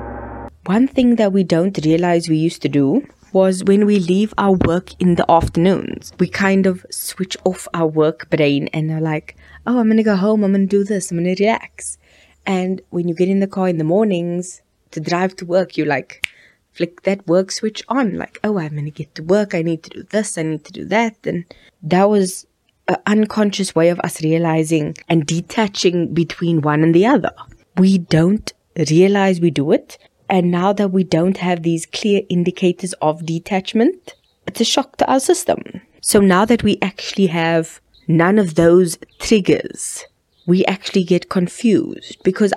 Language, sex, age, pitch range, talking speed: English, female, 20-39, 165-200 Hz, 195 wpm